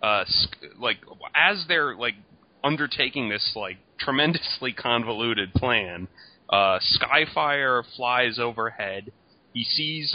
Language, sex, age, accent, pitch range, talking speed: English, male, 30-49, American, 105-125 Hz, 100 wpm